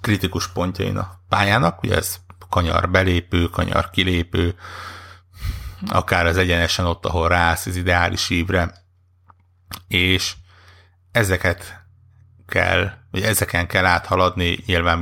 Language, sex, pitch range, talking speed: Hungarian, male, 90-95 Hz, 110 wpm